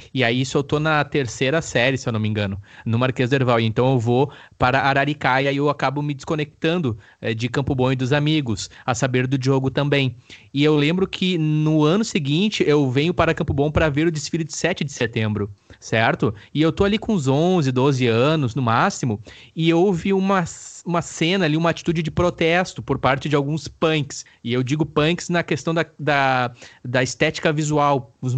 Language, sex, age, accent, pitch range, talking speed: Portuguese, male, 20-39, Brazilian, 130-155 Hz, 205 wpm